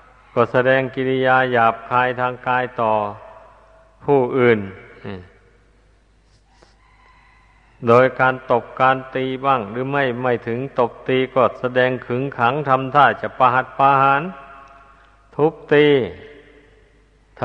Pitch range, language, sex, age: 120-135 Hz, Thai, male, 60-79